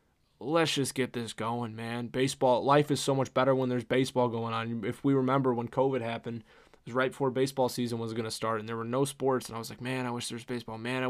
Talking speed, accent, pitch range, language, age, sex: 265 wpm, American, 115-135 Hz, English, 20-39, male